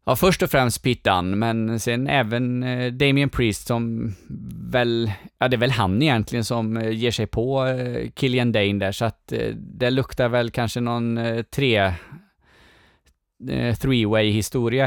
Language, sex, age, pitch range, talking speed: Swedish, male, 20-39, 110-150 Hz, 135 wpm